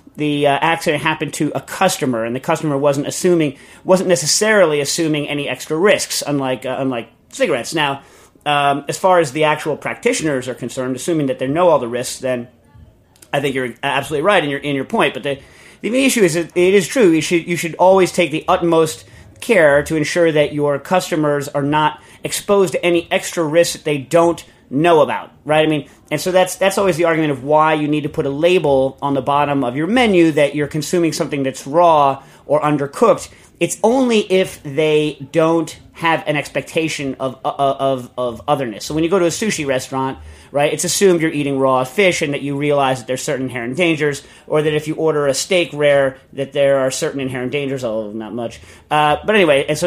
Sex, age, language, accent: male, 30-49, English, American